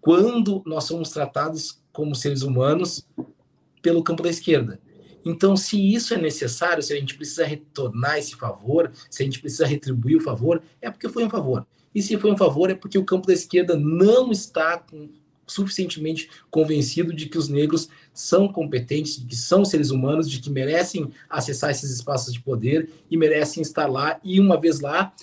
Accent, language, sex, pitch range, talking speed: Brazilian, Portuguese, male, 130-165 Hz, 185 wpm